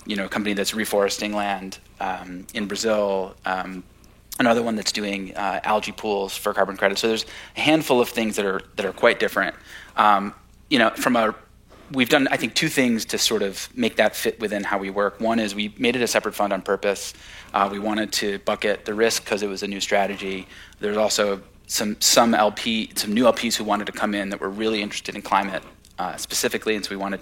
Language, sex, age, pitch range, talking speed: English, male, 30-49, 100-110 Hz, 225 wpm